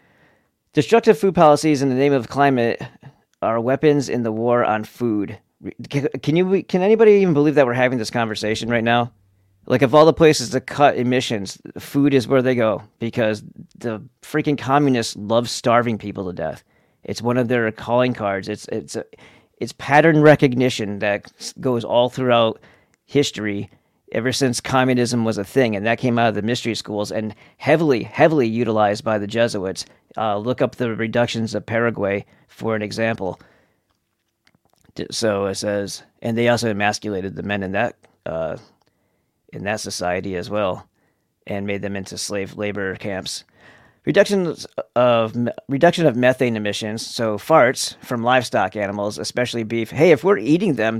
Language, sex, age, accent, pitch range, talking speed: English, male, 40-59, American, 105-135 Hz, 165 wpm